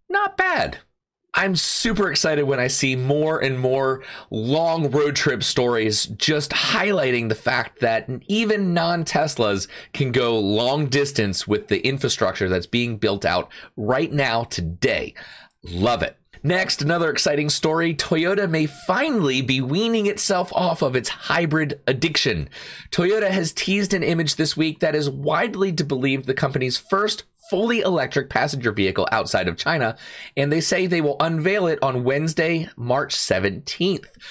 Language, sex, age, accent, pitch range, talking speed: English, male, 30-49, American, 125-175 Hz, 150 wpm